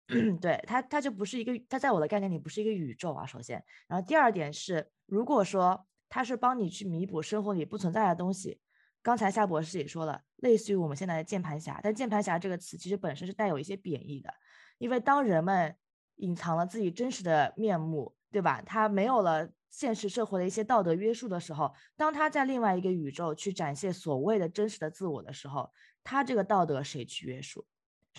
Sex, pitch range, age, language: female, 160-215 Hz, 20-39, Chinese